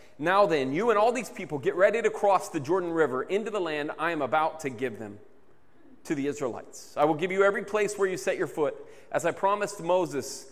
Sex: male